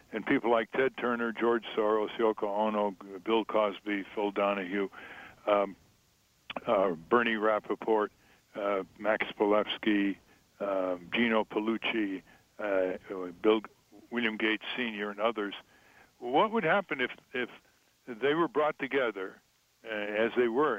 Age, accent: 60-79, American